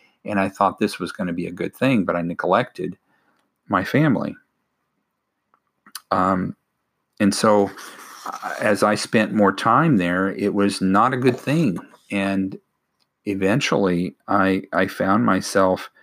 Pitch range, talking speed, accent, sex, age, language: 90-100 Hz, 140 wpm, American, male, 40-59, English